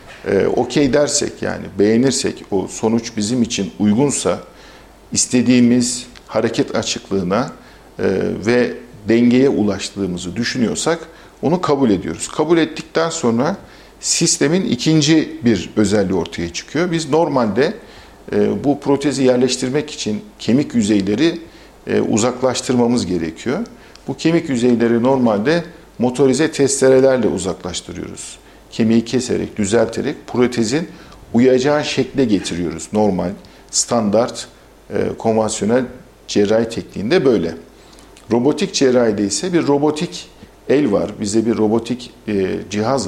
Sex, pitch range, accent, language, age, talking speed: male, 110-145 Hz, native, Turkish, 50-69, 95 wpm